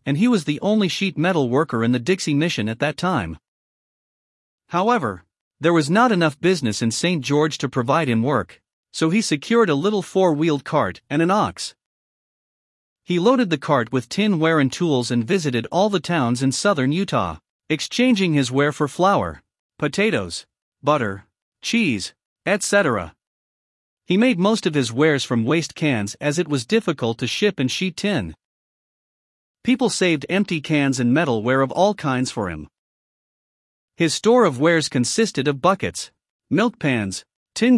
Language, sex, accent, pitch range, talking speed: English, male, American, 130-190 Hz, 160 wpm